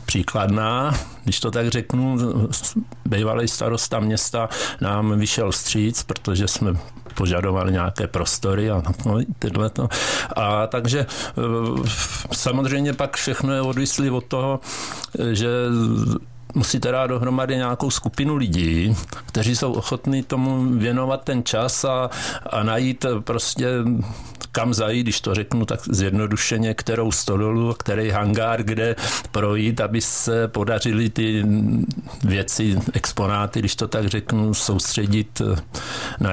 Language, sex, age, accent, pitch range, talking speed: Czech, male, 50-69, native, 105-120 Hz, 120 wpm